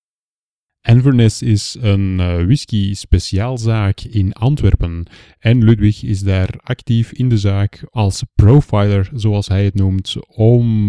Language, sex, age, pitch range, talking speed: Dutch, male, 30-49, 95-115 Hz, 120 wpm